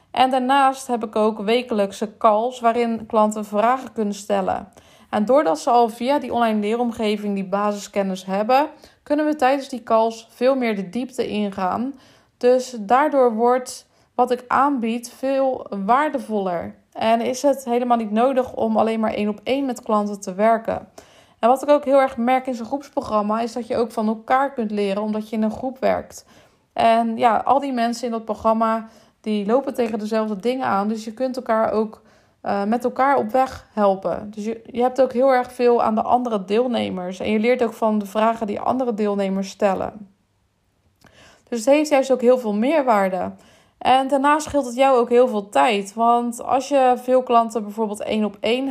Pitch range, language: 215-255 Hz, Dutch